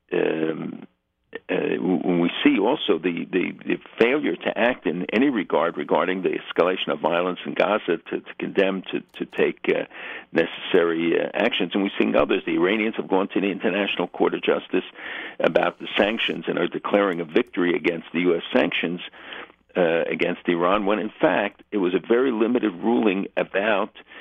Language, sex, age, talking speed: English, male, 60-79, 180 wpm